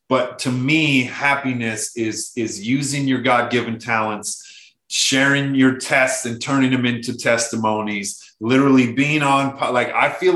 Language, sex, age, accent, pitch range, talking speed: English, male, 30-49, American, 115-135 Hz, 140 wpm